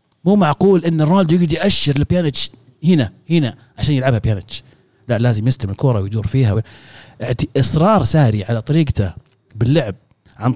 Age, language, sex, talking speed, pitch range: 30-49, Arabic, male, 135 wpm, 120-165 Hz